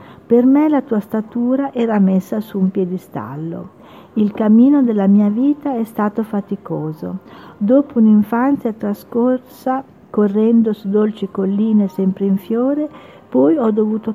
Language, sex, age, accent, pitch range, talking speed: Italian, female, 50-69, native, 195-245 Hz, 130 wpm